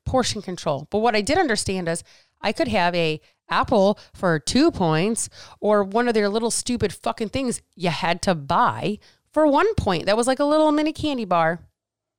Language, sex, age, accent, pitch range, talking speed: English, female, 30-49, American, 180-245 Hz, 190 wpm